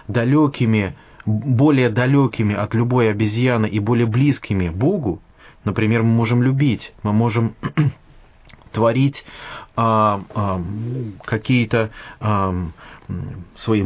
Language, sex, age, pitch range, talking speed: English, male, 30-49, 105-125 Hz, 90 wpm